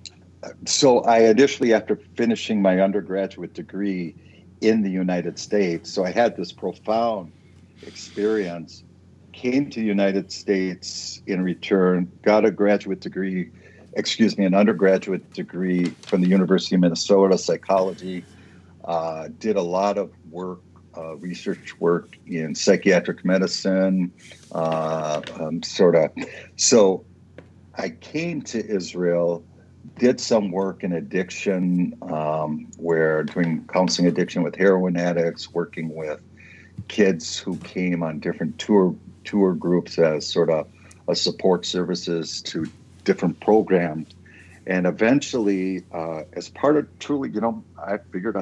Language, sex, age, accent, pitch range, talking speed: English, male, 60-79, American, 85-100 Hz, 130 wpm